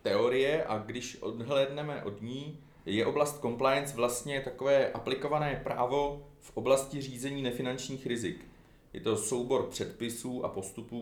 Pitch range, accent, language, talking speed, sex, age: 105-135 Hz, native, Czech, 130 wpm, male, 40-59